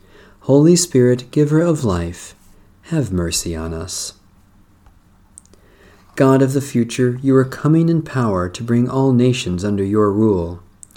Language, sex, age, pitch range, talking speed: English, male, 40-59, 95-135 Hz, 135 wpm